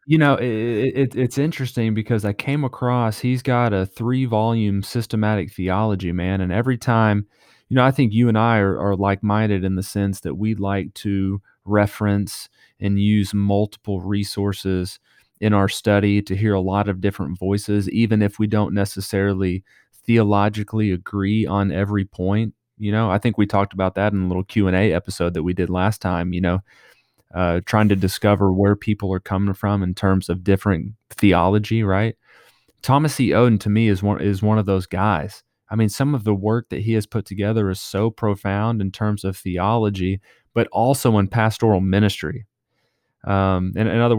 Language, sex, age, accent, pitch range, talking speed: English, male, 30-49, American, 95-115 Hz, 185 wpm